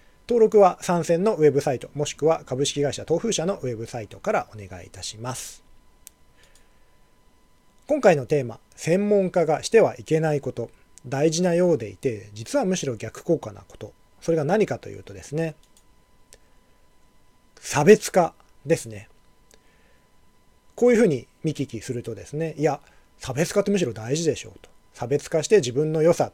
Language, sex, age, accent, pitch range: Japanese, male, 40-59, native, 115-170 Hz